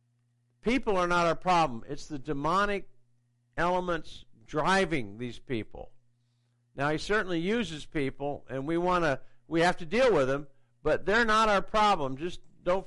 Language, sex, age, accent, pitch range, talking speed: English, male, 60-79, American, 120-195 Hz, 155 wpm